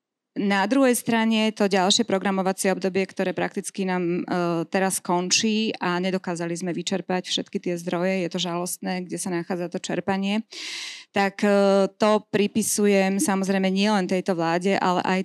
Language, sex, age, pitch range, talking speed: Slovak, female, 20-39, 180-200 Hz, 150 wpm